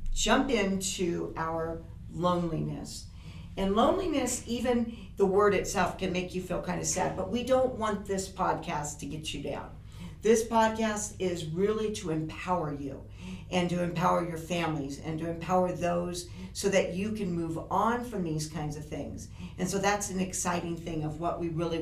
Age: 50-69